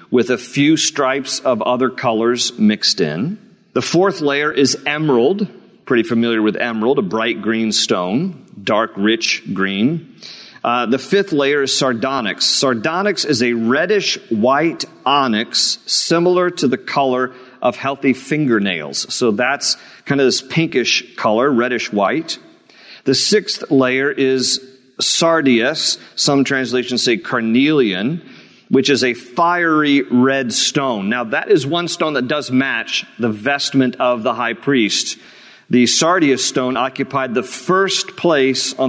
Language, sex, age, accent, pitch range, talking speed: English, male, 50-69, American, 125-165 Hz, 135 wpm